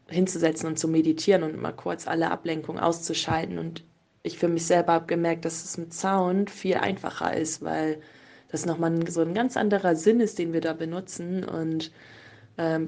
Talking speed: 180 wpm